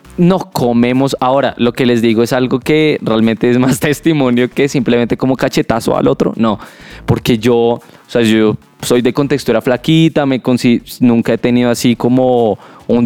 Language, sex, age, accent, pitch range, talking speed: Spanish, male, 20-39, Colombian, 120-145 Hz, 175 wpm